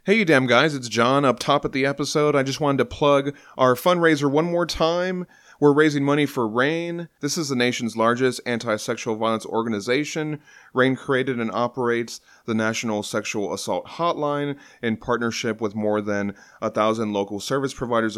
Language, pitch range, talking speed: English, 115-150 Hz, 180 wpm